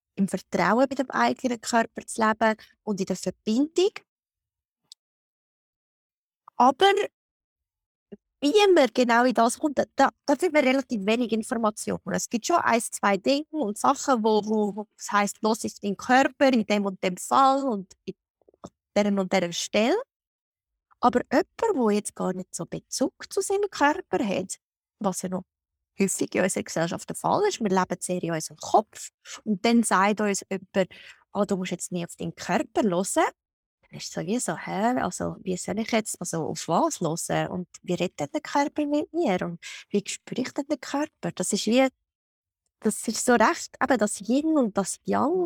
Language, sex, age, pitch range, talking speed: German, female, 20-39, 190-265 Hz, 175 wpm